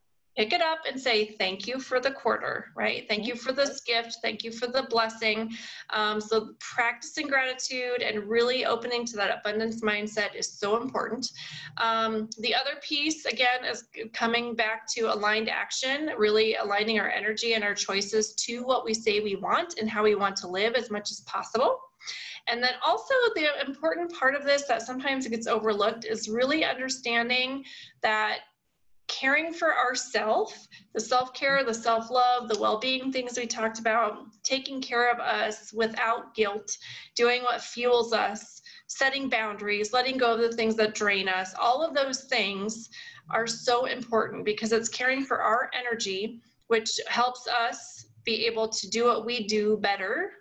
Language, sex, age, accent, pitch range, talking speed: English, female, 30-49, American, 220-255 Hz, 170 wpm